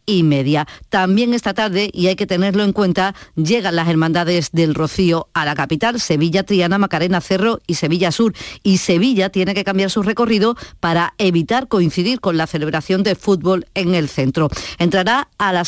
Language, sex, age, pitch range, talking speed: Spanish, female, 40-59, 170-205 Hz, 180 wpm